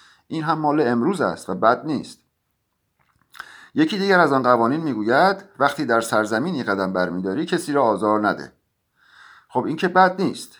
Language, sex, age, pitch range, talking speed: Persian, male, 50-69, 110-165 Hz, 160 wpm